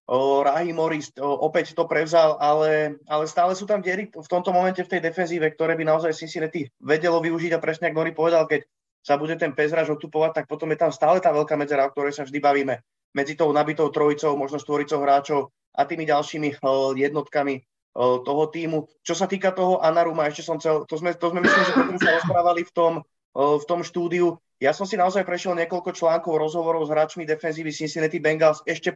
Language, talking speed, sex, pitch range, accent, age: Czech, 205 wpm, male, 150-170 Hz, native, 20-39